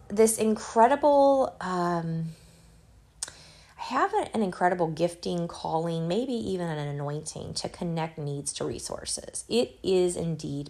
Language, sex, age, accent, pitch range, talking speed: English, female, 20-39, American, 150-180 Hz, 120 wpm